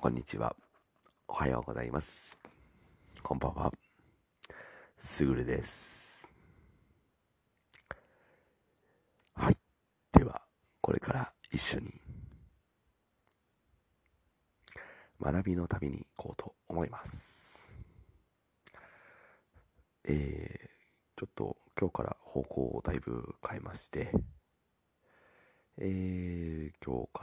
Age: 40-59